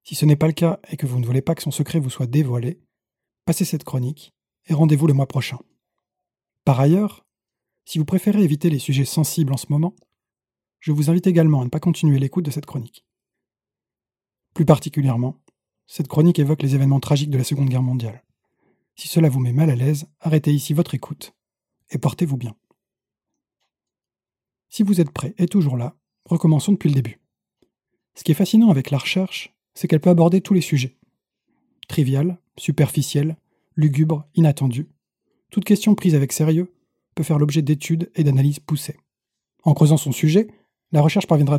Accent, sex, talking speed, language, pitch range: French, male, 180 wpm, French, 140-170 Hz